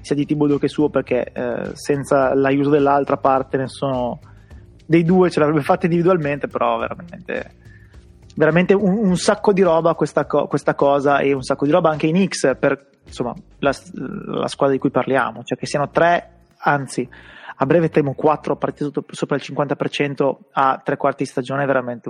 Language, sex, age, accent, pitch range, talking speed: Italian, male, 20-39, native, 135-165 Hz, 180 wpm